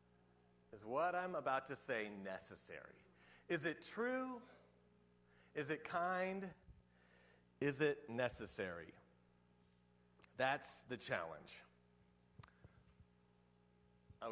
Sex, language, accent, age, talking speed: male, English, American, 40-59, 80 wpm